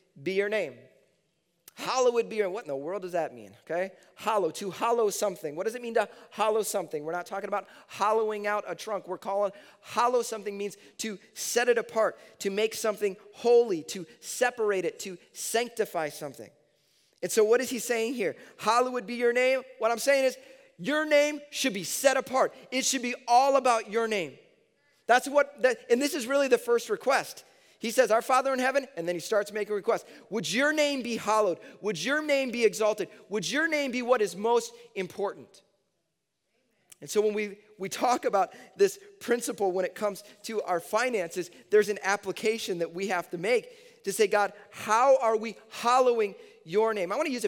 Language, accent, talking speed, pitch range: English, American, 205 wpm, 185-245 Hz